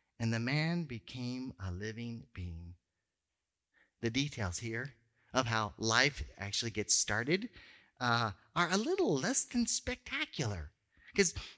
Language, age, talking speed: English, 40-59, 125 wpm